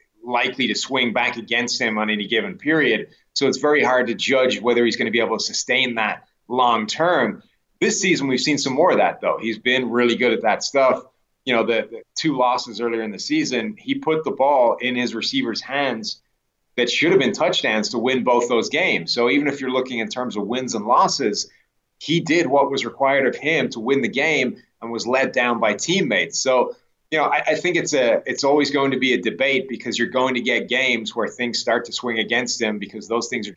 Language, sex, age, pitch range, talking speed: English, male, 30-49, 115-135 Hz, 235 wpm